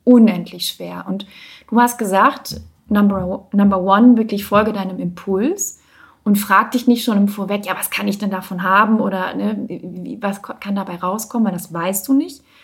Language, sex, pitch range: German, female, 200-240 Hz